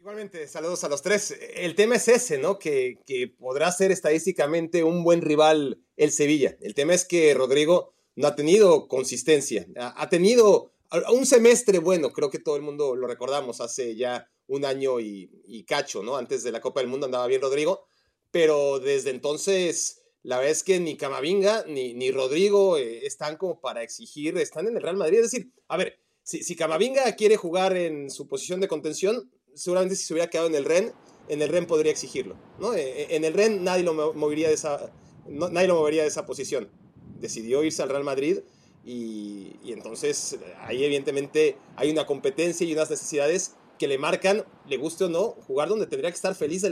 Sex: male